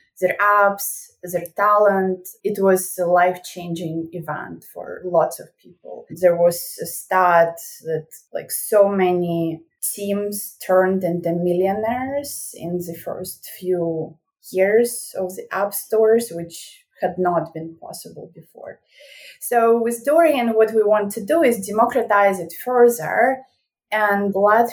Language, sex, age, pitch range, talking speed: English, female, 20-39, 180-230 Hz, 130 wpm